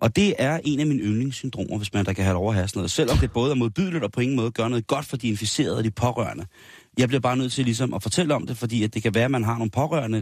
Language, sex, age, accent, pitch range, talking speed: Danish, male, 30-49, native, 100-125 Hz, 305 wpm